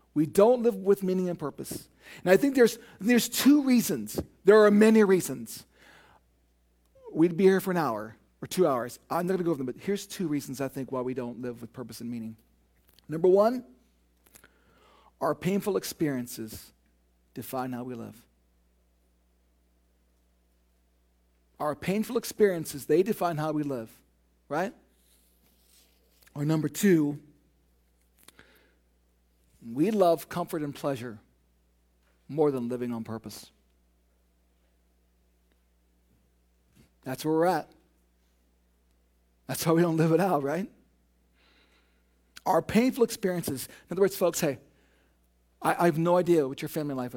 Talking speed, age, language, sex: 135 wpm, 40-59, English, male